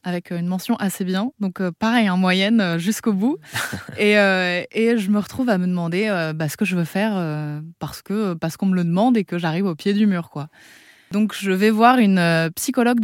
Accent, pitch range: French, 160-205 Hz